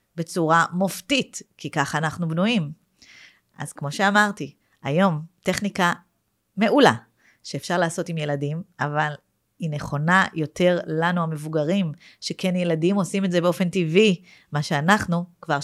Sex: female